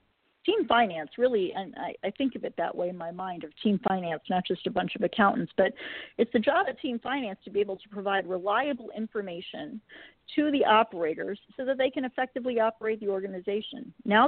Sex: female